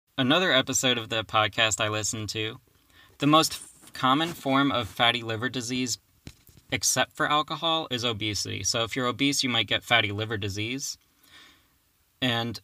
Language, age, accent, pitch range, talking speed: English, 20-39, American, 105-140 Hz, 150 wpm